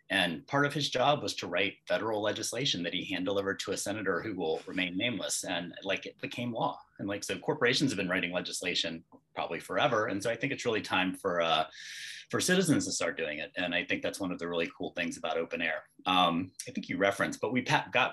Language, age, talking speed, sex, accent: English, 30-49, 240 wpm, male, American